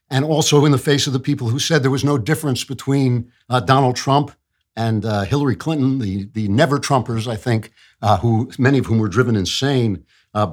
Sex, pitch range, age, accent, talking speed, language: male, 105-135 Hz, 50-69, American, 210 wpm, English